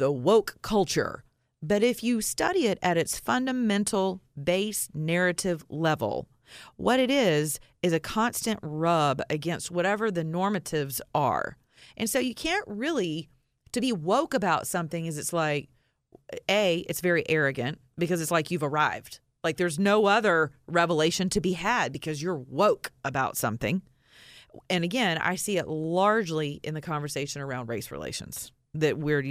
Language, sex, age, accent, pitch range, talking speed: English, female, 40-59, American, 150-205 Hz, 155 wpm